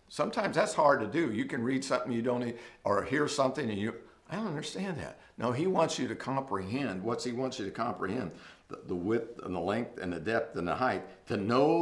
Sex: male